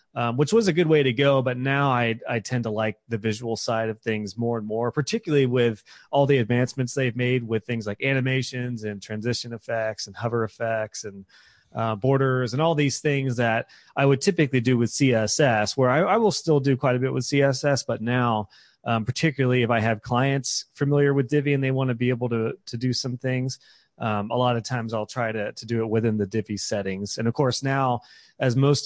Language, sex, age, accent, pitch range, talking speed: English, male, 30-49, American, 115-135 Hz, 225 wpm